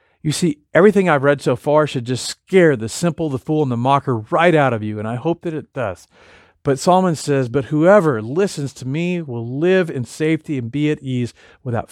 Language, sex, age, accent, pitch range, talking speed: English, male, 40-59, American, 120-155 Hz, 220 wpm